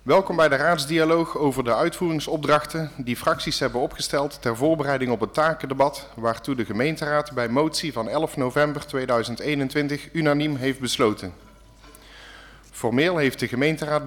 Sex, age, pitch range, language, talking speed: male, 50-69, 125-150 Hz, Dutch, 135 wpm